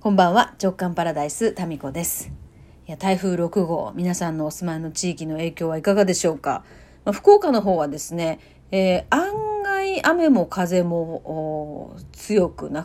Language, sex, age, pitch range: Japanese, female, 40-59, 155-205 Hz